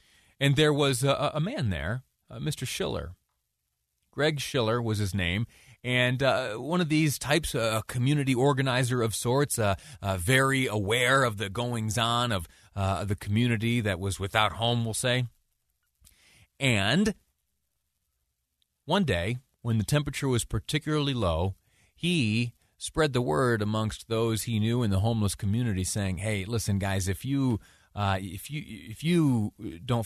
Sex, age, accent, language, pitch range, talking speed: male, 30-49, American, English, 100-130 Hz, 150 wpm